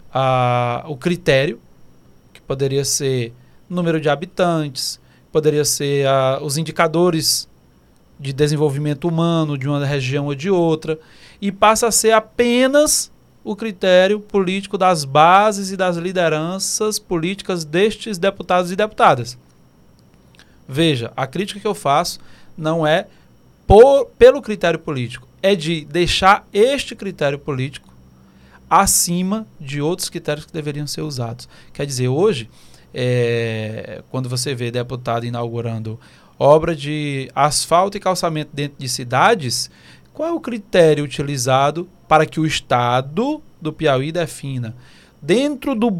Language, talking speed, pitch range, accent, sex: Portuguese, 125 wpm, 135-190 Hz, Brazilian, male